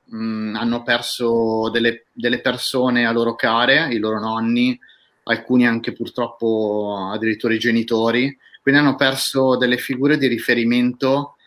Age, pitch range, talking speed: 30-49, 115-135 Hz, 130 wpm